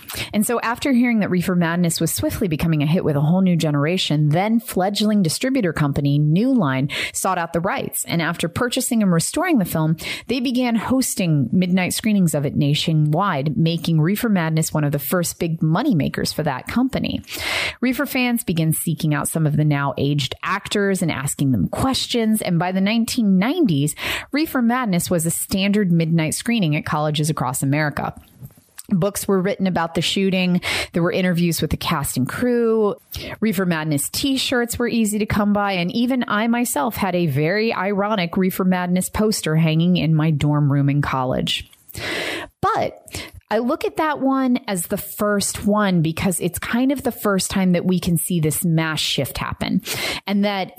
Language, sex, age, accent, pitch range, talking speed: English, female, 30-49, American, 155-210 Hz, 180 wpm